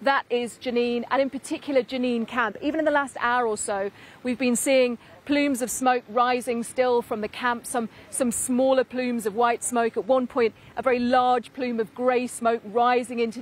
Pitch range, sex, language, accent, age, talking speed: 230-255 Hz, female, English, British, 40-59, 200 wpm